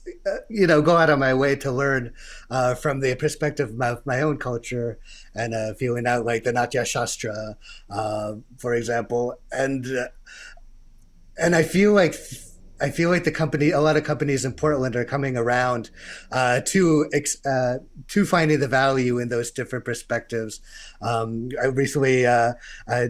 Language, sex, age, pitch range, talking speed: English, male, 30-49, 115-140 Hz, 170 wpm